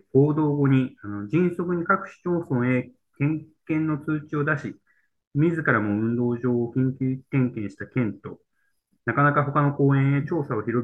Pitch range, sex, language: 115-165 Hz, male, Japanese